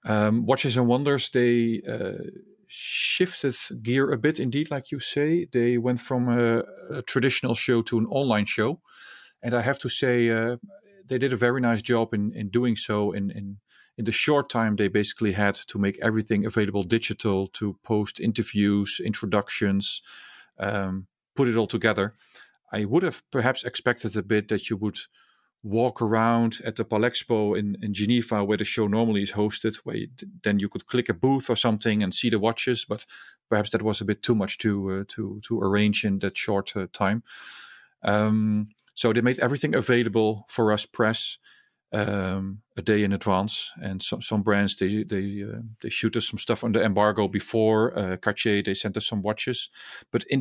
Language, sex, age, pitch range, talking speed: English, male, 40-59, 105-120 Hz, 190 wpm